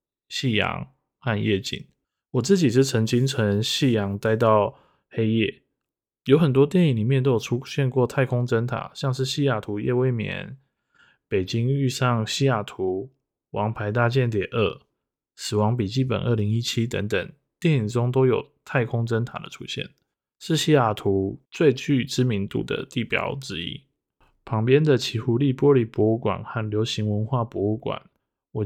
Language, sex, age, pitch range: Chinese, male, 20-39, 110-135 Hz